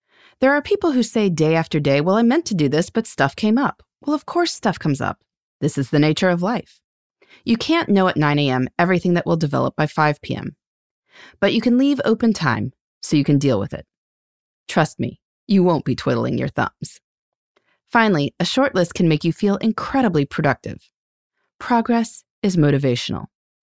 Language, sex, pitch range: English, female, 155-230 Hz